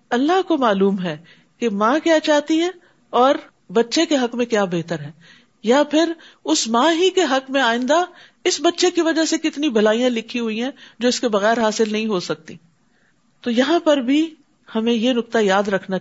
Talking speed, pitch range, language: 200 wpm, 200-285 Hz, Urdu